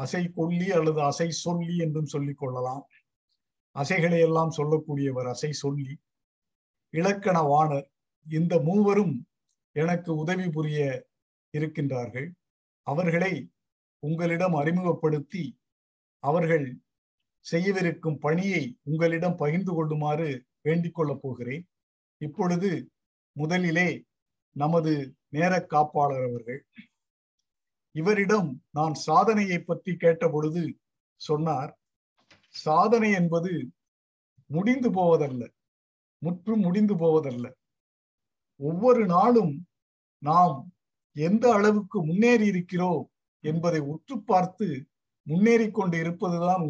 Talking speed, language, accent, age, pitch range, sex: 80 wpm, Tamil, native, 50-69, 145-175 Hz, male